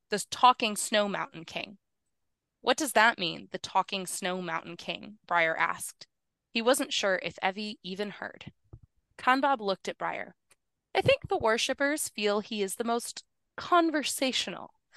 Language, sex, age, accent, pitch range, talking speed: English, female, 20-39, American, 185-250 Hz, 150 wpm